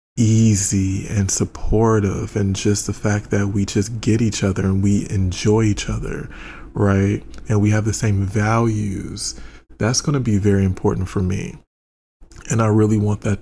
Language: English